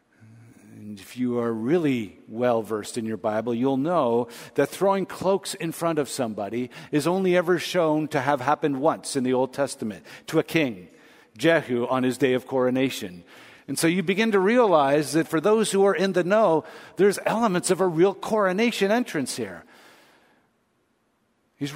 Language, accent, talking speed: English, American, 170 wpm